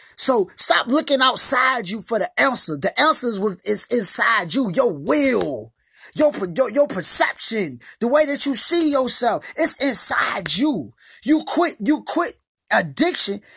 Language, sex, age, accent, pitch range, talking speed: English, male, 20-39, American, 185-265 Hz, 155 wpm